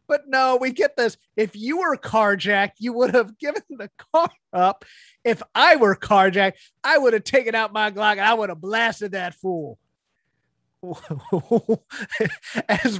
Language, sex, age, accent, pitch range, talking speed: English, male, 30-49, American, 190-245 Hz, 160 wpm